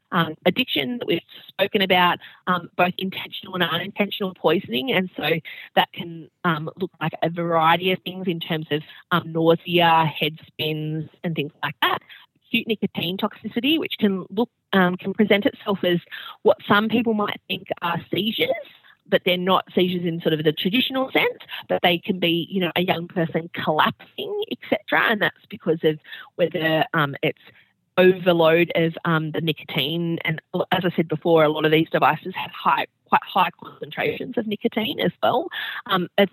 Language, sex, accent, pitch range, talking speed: English, female, Australian, 160-195 Hz, 175 wpm